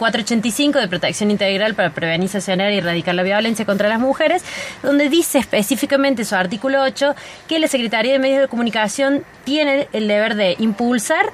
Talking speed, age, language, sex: 165 wpm, 20-39, Spanish, female